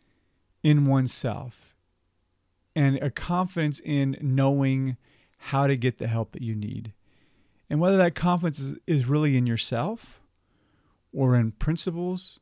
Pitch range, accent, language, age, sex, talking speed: 110-150 Hz, American, English, 40-59, male, 130 wpm